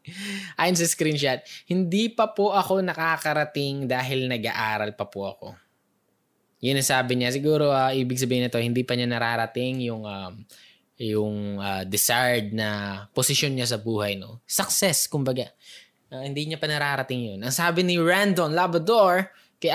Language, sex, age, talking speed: Filipino, male, 20-39, 155 wpm